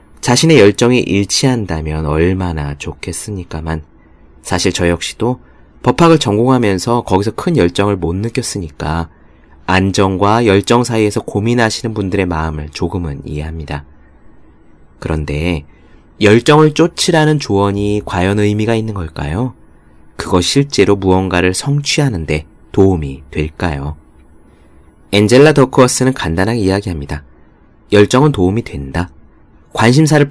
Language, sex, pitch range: Korean, male, 80-120 Hz